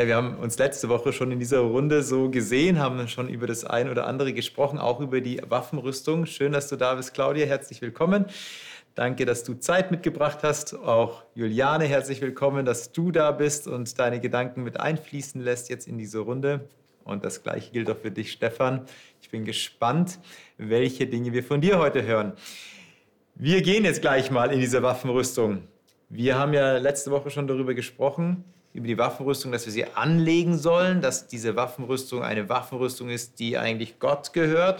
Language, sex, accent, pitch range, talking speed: German, male, German, 120-145 Hz, 185 wpm